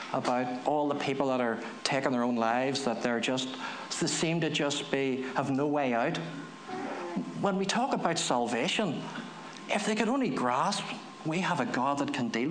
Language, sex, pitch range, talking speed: English, male, 130-165 Hz, 180 wpm